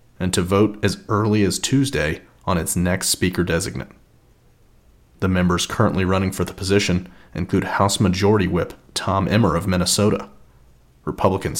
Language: English